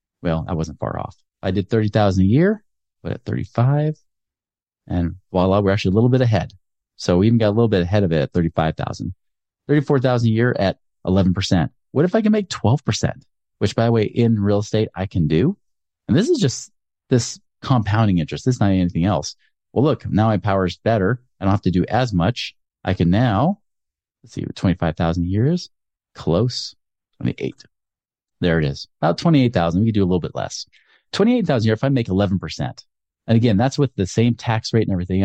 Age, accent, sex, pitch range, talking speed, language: 30-49, American, male, 90-125 Hz, 205 wpm, English